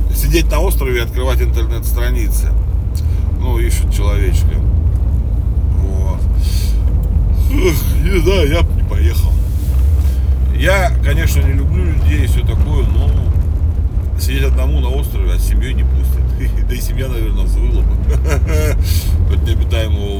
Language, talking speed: Russian, 120 wpm